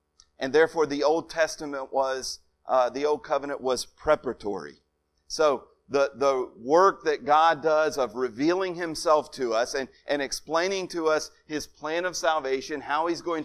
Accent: American